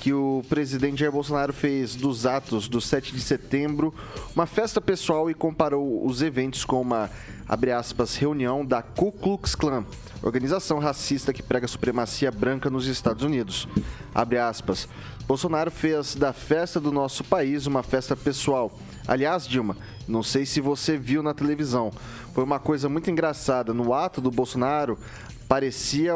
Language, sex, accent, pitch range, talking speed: Portuguese, male, Brazilian, 125-150 Hz, 160 wpm